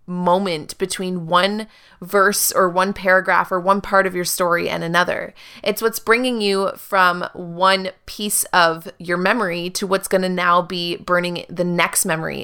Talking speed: 170 wpm